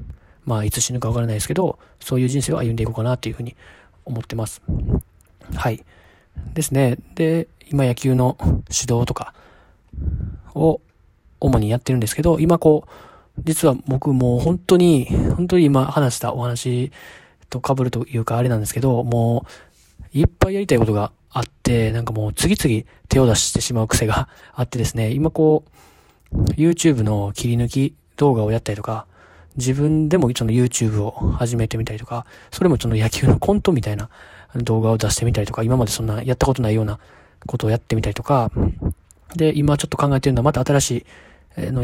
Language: Japanese